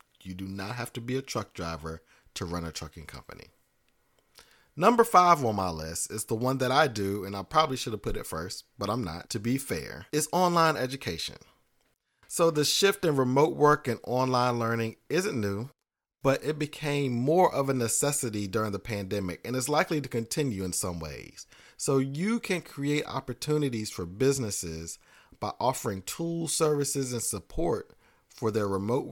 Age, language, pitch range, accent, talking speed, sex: 40-59, English, 100-145 Hz, American, 180 wpm, male